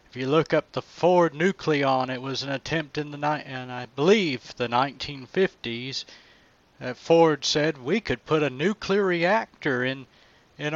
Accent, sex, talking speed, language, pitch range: American, male, 175 wpm, English, 125-155 Hz